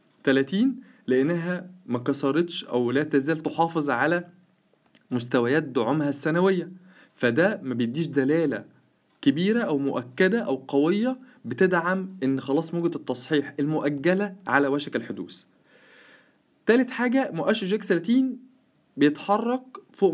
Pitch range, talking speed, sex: 145-190 Hz, 110 wpm, male